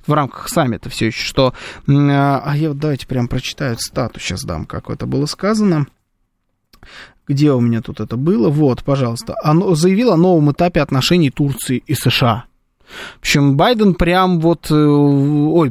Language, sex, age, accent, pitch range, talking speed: Russian, male, 20-39, native, 130-175 Hz, 160 wpm